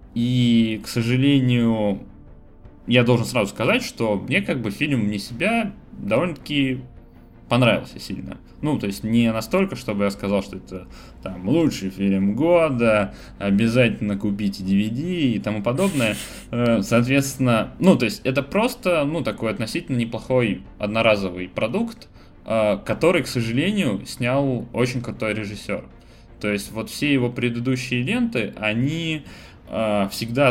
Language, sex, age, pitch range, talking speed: Russian, male, 20-39, 95-125 Hz, 130 wpm